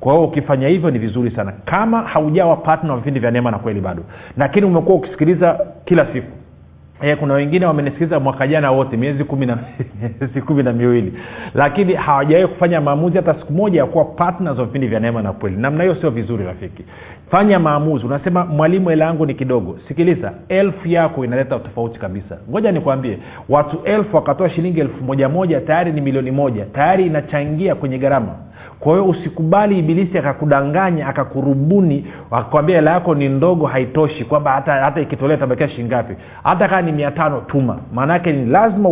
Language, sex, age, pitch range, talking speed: Swahili, male, 40-59, 120-165 Hz, 170 wpm